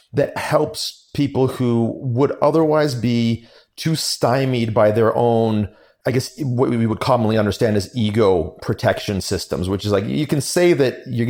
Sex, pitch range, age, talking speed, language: male, 110-135 Hz, 30-49, 165 wpm, English